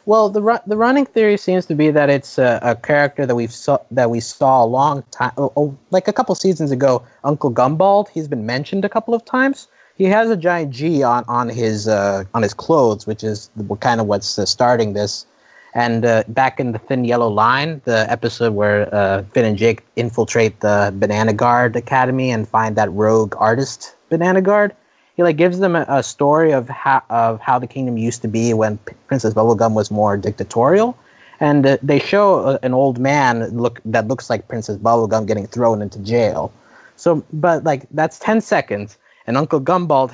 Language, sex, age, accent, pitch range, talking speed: English, male, 20-39, American, 110-150 Hz, 200 wpm